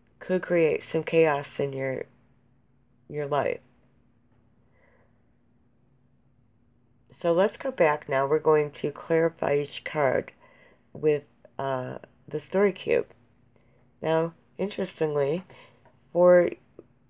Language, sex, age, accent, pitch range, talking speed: English, female, 40-59, American, 120-160 Hz, 95 wpm